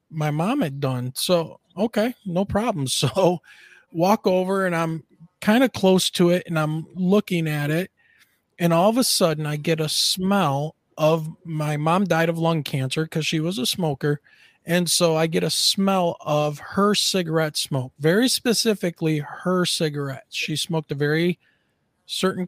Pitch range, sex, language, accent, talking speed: 150-190 Hz, male, English, American, 170 wpm